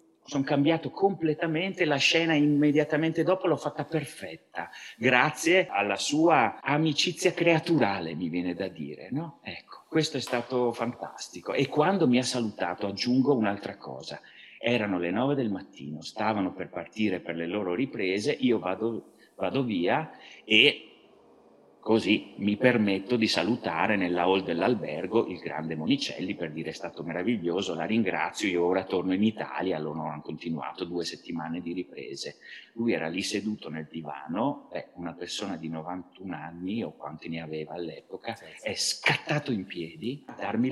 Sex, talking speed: male, 150 wpm